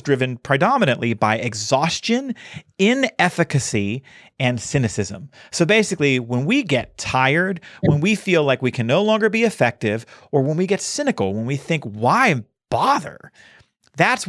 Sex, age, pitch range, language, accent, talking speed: male, 40-59, 115-165 Hz, English, American, 145 wpm